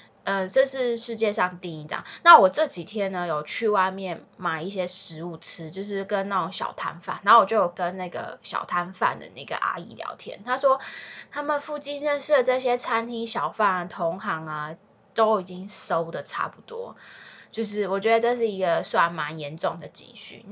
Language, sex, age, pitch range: Chinese, female, 20-39, 175-230 Hz